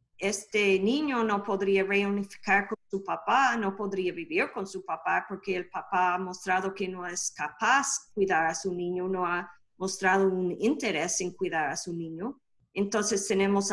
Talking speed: 175 wpm